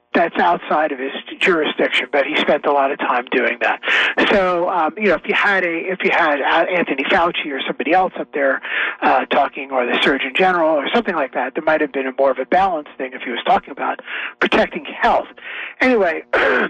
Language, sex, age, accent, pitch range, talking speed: English, male, 40-59, American, 150-195 Hz, 215 wpm